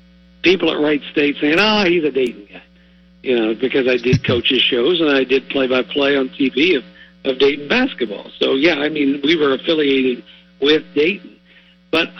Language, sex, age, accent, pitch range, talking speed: English, male, 60-79, American, 125-165 Hz, 185 wpm